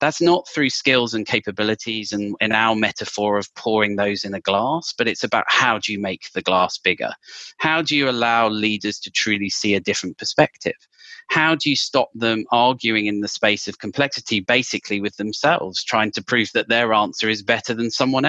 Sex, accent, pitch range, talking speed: male, British, 105-125 Hz, 200 wpm